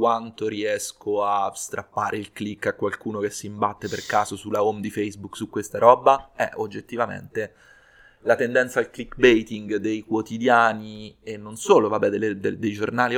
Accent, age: native, 20-39